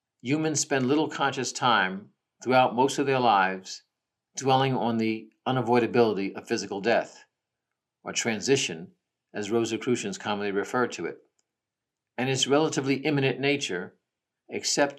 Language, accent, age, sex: English, American, 50-69, male